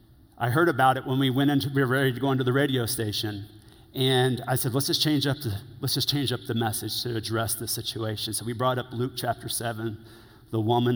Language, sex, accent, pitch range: English, male, American, 115-155 Hz